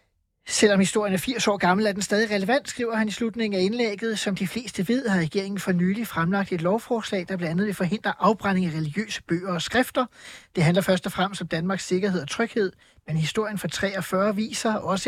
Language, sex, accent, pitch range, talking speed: Danish, male, native, 175-205 Hz, 210 wpm